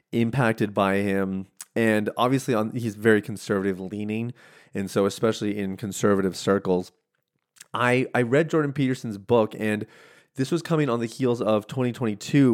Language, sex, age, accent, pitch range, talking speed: English, male, 30-49, American, 105-125 Hz, 145 wpm